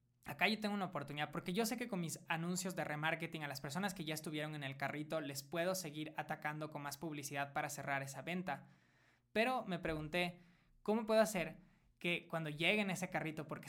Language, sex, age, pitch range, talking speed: Spanish, male, 20-39, 145-175 Hz, 200 wpm